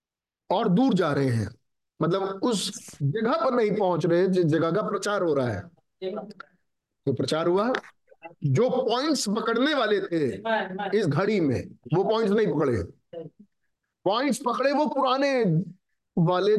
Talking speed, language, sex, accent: 150 wpm, Hindi, male, native